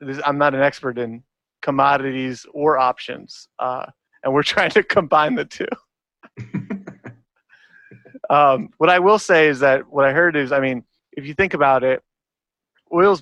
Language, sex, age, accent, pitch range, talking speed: English, male, 30-49, American, 130-150 Hz, 160 wpm